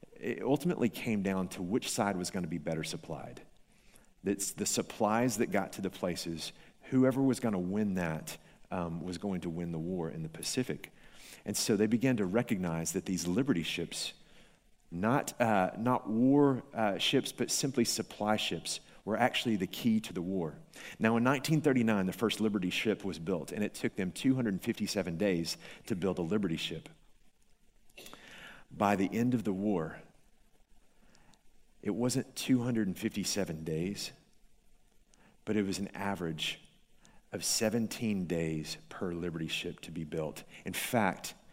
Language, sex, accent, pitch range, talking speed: English, male, American, 90-120 Hz, 155 wpm